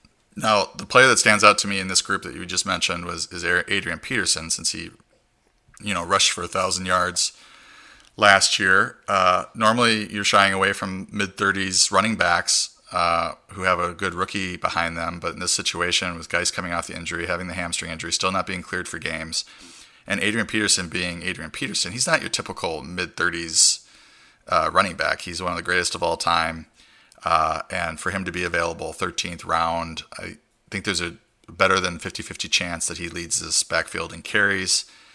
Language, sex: English, male